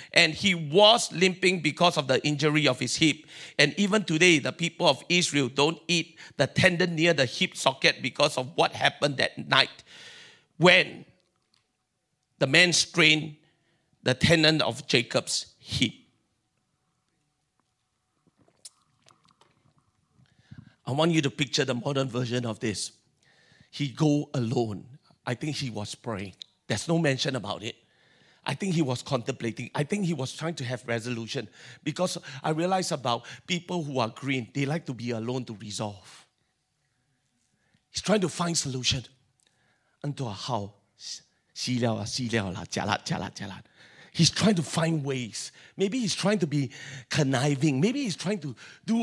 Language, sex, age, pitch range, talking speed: English, male, 50-69, 130-175 Hz, 150 wpm